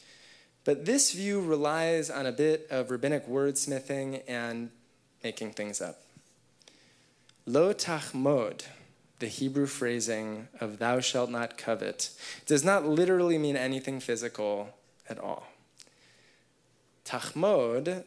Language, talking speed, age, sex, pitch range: English, 105 wpm, 20-39, male, 125-160 Hz